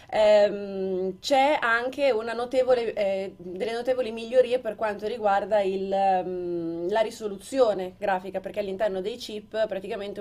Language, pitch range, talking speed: Italian, 190-220 Hz, 130 wpm